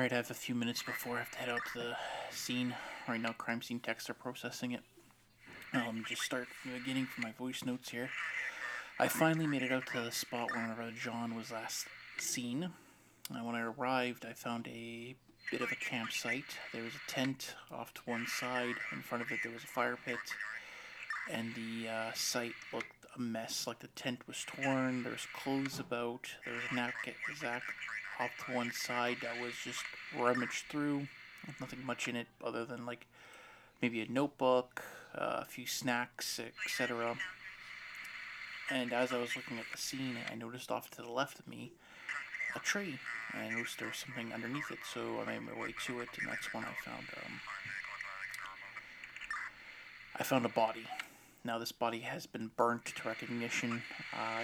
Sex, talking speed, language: male, 190 wpm, English